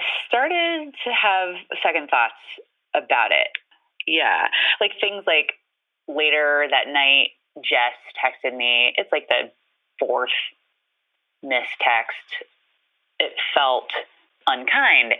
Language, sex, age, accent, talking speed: English, female, 20-39, American, 105 wpm